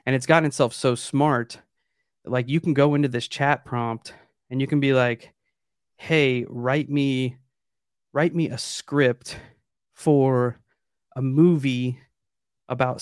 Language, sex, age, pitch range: English, male, 30-49, 120-140 Hz